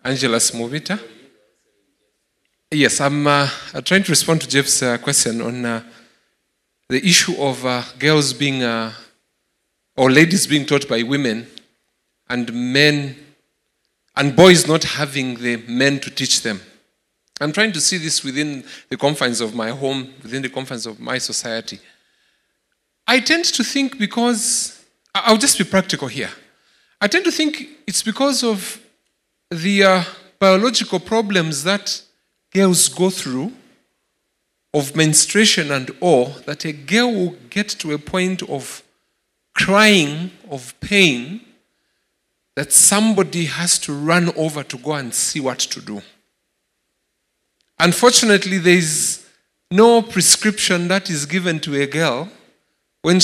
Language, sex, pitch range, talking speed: English, male, 135-195 Hz, 135 wpm